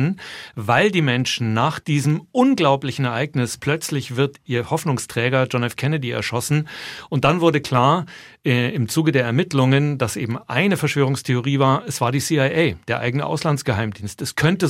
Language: German